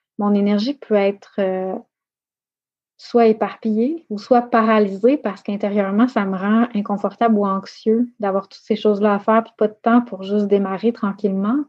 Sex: female